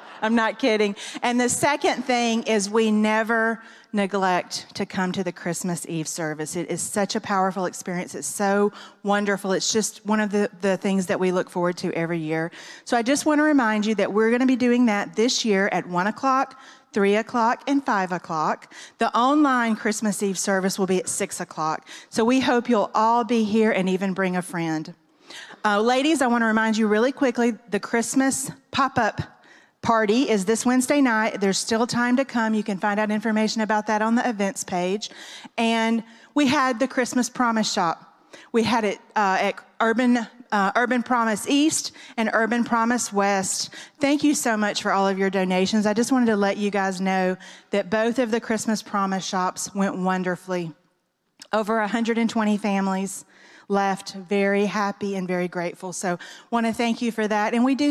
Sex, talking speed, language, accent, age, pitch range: female, 195 wpm, English, American, 40-59, 195-235 Hz